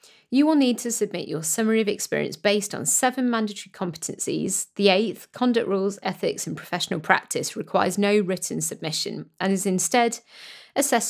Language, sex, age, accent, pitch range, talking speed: English, female, 30-49, British, 190-250 Hz, 160 wpm